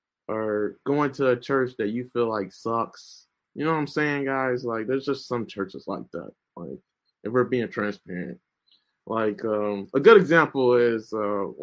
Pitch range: 110-140 Hz